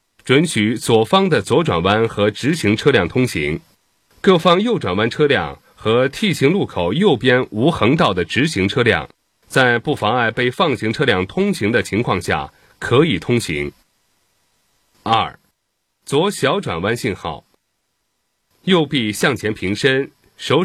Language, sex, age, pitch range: Chinese, male, 30-49, 105-150 Hz